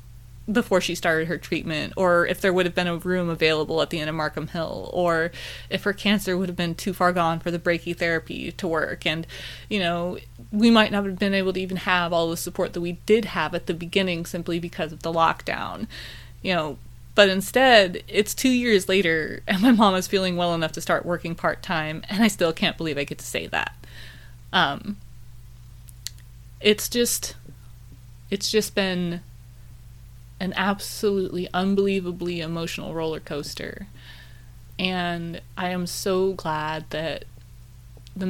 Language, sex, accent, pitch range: English, female, American, 135-185 Hz